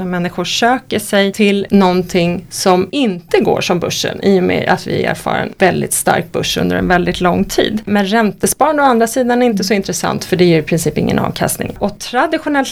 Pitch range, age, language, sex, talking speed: 185-235 Hz, 30-49, Swedish, female, 210 wpm